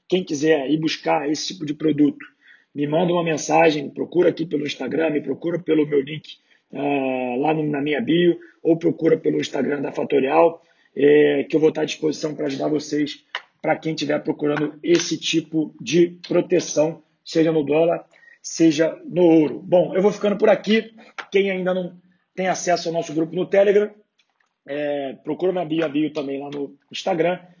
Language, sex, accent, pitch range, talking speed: Portuguese, male, Brazilian, 155-180 Hz, 170 wpm